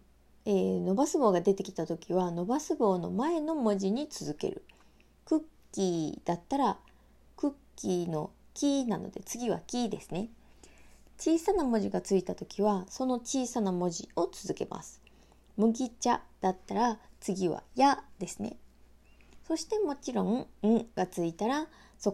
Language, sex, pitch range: Japanese, female, 180-275 Hz